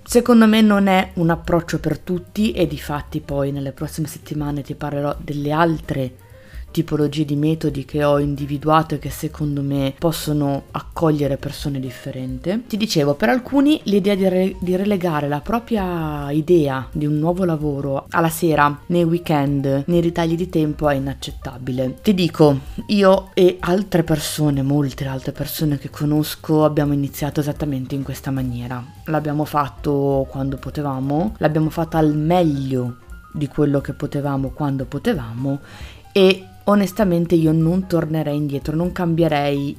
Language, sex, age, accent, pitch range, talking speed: Italian, female, 30-49, native, 140-170 Hz, 150 wpm